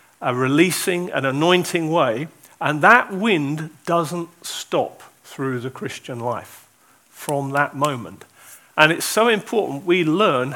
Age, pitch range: 40-59, 150-200 Hz